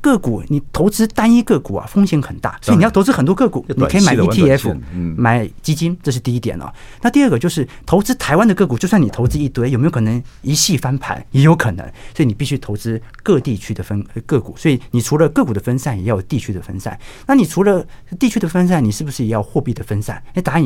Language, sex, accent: Chinese, male, native